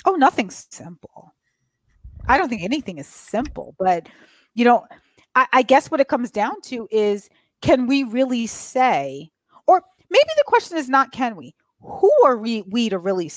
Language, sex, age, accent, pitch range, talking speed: English, female, 30-49, American, 200-275 Hz, 175 wpm